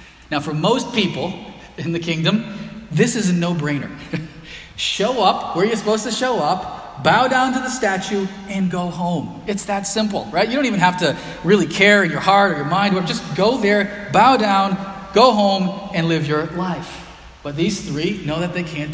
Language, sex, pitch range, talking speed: English, male, 150-200 Hz, 200 wpm